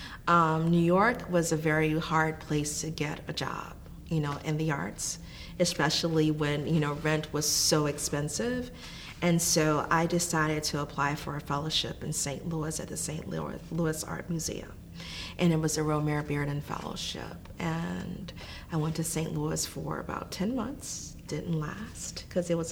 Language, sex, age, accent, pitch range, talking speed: English, female, 40-59, American, 150-165 Hz, 170 wpm